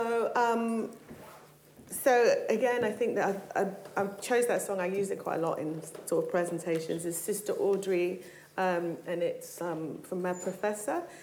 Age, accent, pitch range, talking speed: 30-49, British, 170-200 Hz, 160 wpm